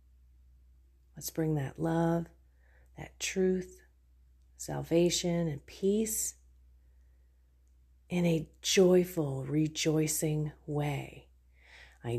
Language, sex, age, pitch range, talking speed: English, female, 40-59, 115-170 Hz, 75 wpm